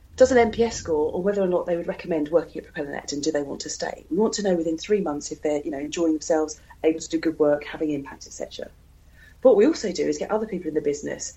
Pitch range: 160-225 Hz